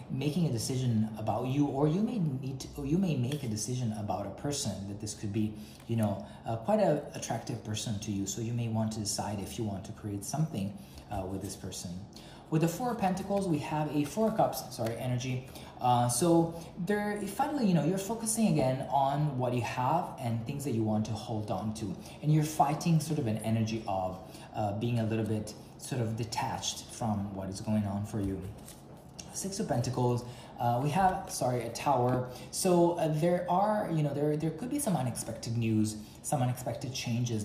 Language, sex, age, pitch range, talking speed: English, male, 20-39, 110-150 Hz, 210 wpm